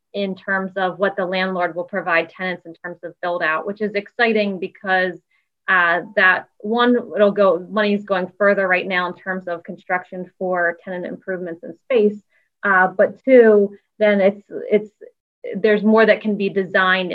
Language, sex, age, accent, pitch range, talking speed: English, female, 20-39, American, 185-210 Hz, 170 wpm